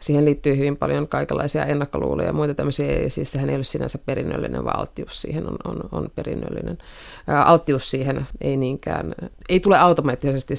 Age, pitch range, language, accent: 30-49, 145-170 Hz, Finnish, native